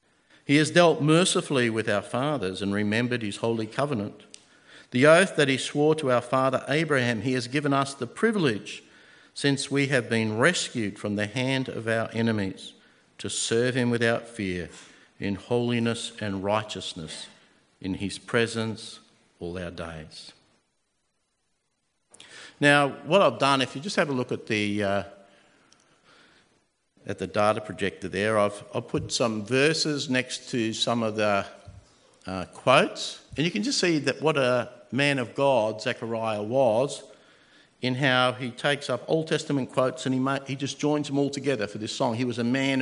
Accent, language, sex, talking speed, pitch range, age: Australian, English, male, 170 wpm, 110-140 Hz, 50-69